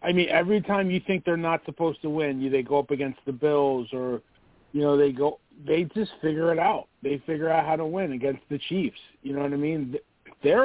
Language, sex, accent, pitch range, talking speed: English, male, American, 145-180 Hz, 240 wpm